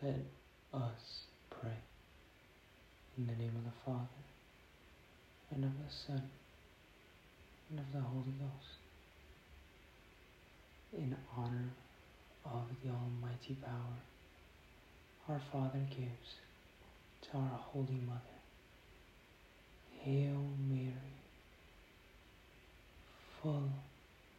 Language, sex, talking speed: English, male, 85 wpm